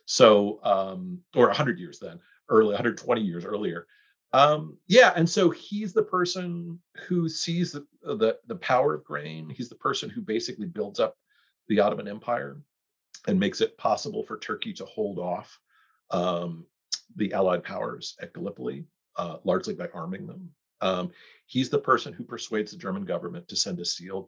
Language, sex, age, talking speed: English, male, 40-59, 170 wpm